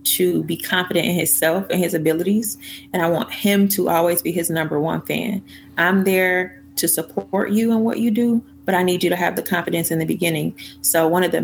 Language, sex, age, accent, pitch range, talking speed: English, female, 20-39, American, 155-185 Hz, 225 wpm